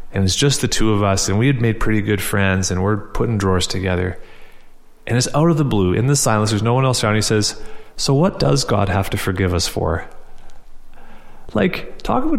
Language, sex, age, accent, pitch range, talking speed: English, male, 30-49, American, 105-135 Hz, 230 wpm